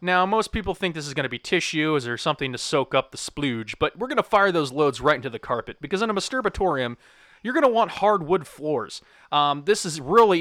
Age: 30-49